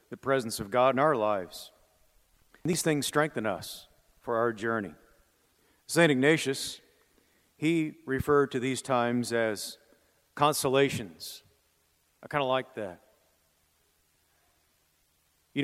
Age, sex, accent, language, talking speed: 50-69, male, American, English, 110 wpm